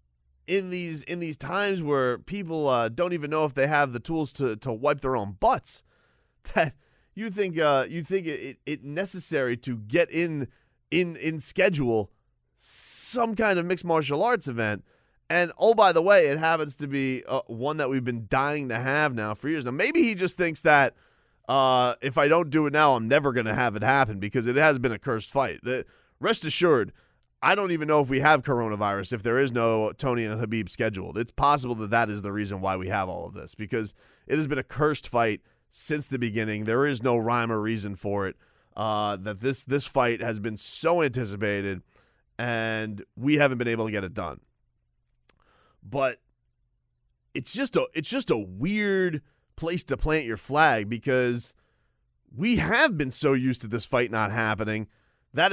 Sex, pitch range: male, 110-155 Hz